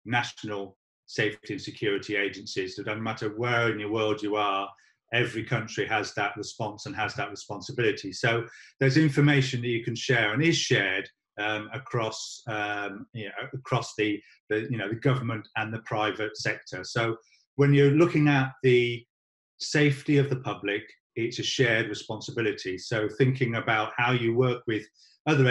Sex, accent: male, British